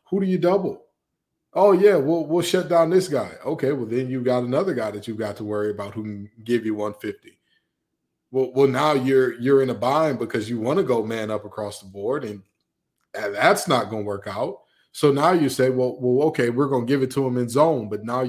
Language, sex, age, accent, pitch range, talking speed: English, male, 20-39, American, 115-150 Hz, 245 wpm